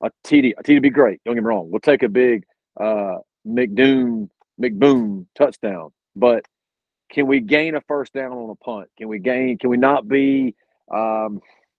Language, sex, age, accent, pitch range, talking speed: English, male, 40-59, American, 120-145 Hz, 185 wpm